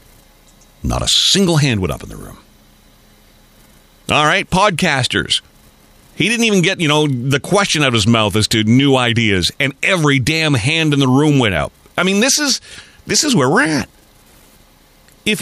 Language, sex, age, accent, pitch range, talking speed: English, male, 40-59, American, 115-185 Hz, 185 wpm